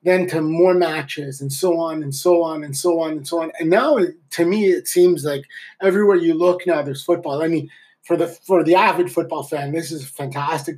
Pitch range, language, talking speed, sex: 155-195 Hz, English, 235 wpm, male